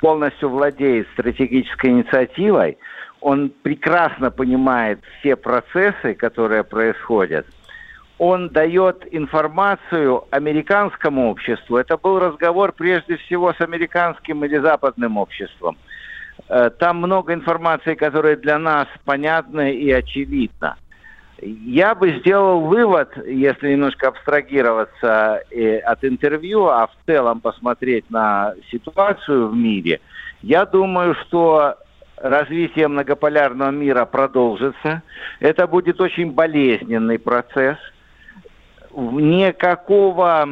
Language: Russian